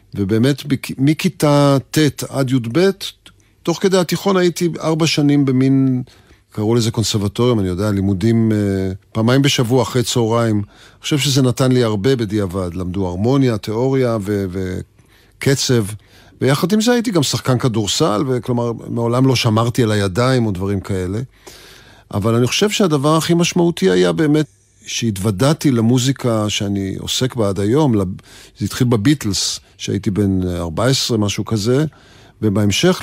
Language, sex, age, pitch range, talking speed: Hebrew, male, 40-59, 100-135 Hz, 135 wpm